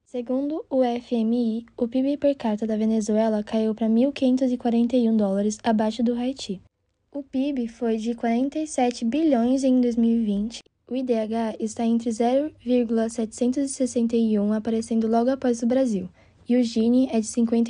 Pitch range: 225-250 Hz